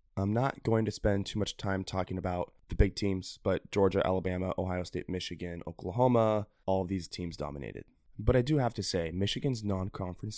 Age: 20-39